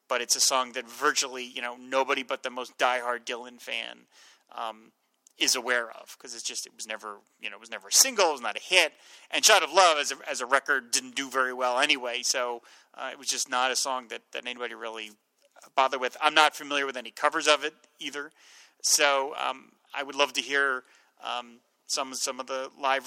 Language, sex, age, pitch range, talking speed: English, male, 30-49, 125-145 Hz, 230 wpm